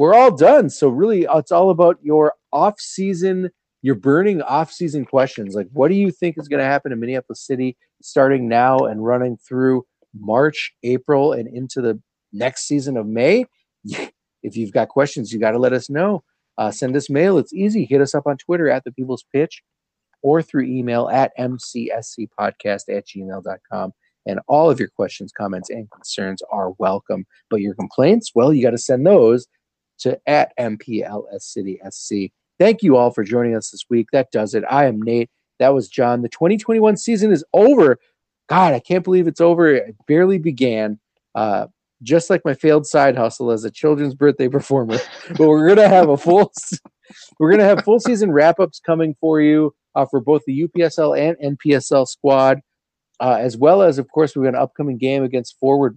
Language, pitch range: English, 125-160 Hz